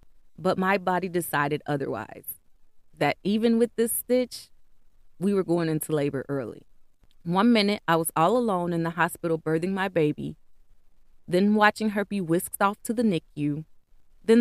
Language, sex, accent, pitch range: English, female, American, 150-195 Hz